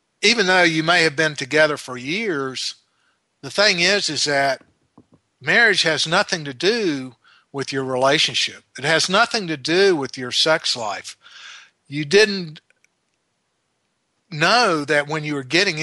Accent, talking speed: American, 150 wpm